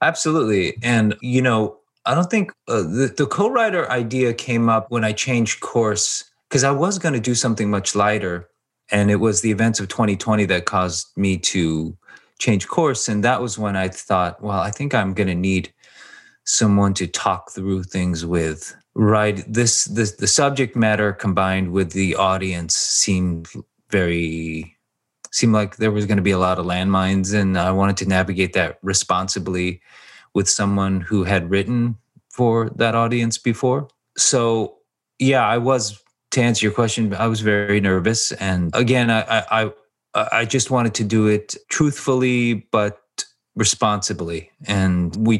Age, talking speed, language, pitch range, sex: 30-49, 165 wpm, English, 95-125 Hz, male